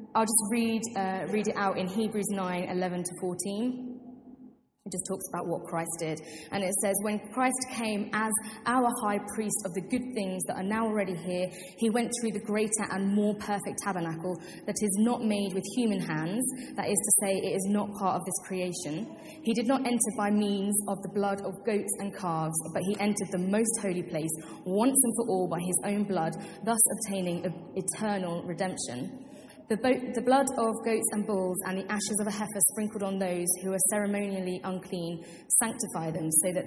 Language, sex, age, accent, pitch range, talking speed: English, female, 20-39, British, 185-220 Hz, 200 wpm